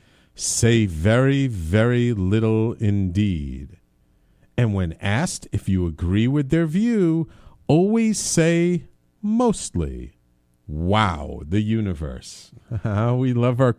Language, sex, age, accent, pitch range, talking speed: English, male, 50-69, American, 95-145 Hz, 100 wpm